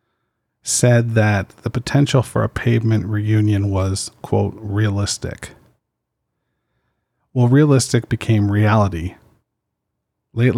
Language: English